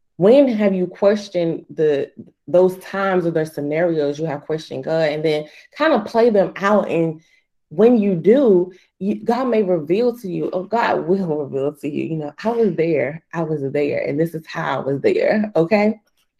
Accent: American